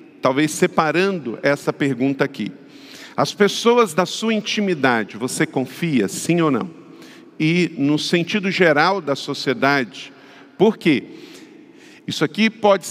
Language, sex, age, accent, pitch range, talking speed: Portuguese, male, 50-69, Brazilian, 135-180 Hz, 120 wpm